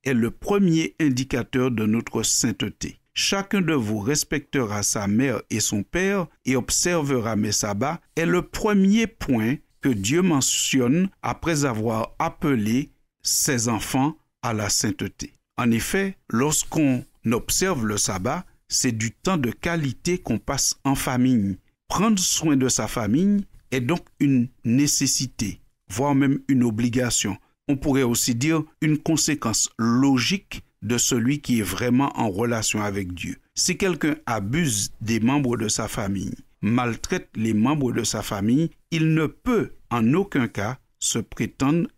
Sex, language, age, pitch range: male, French, 60-79, 110-150 Hz